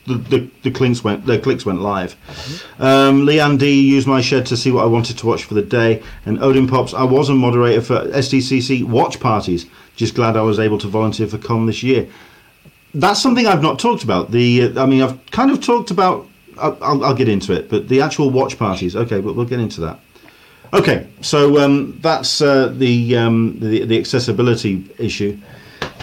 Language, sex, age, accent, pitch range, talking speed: English, male, 40-59, British, 105-135 Hz, 205 wpm